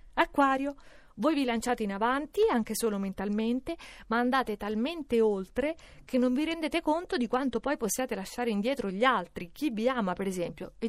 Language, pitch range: Italian, 195-275 Hz